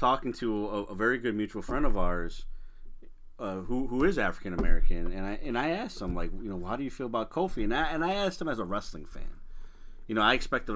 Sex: male